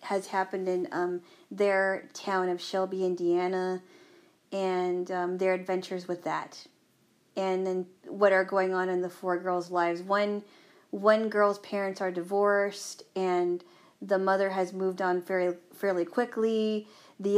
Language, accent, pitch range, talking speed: English, American, 180-205 Hz, 145 wpm